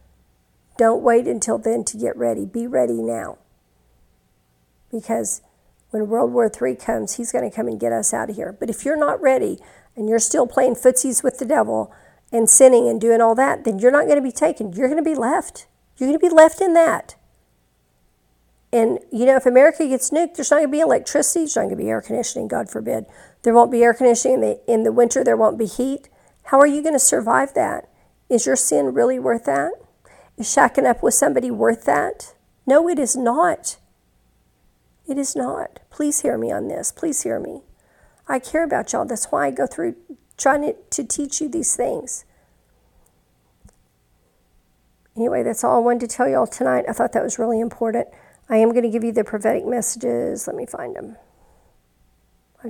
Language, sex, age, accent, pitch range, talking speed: English, female, 50-69, American, 225-285 Hz, 205 wpm